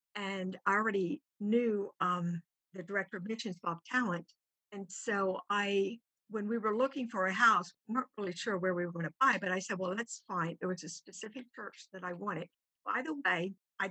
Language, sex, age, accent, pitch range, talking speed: English, female, 50-69, American, 185-225 Hz, 215 wpm